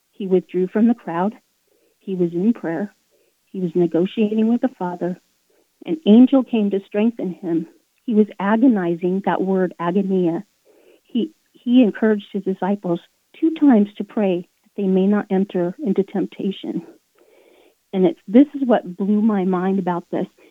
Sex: female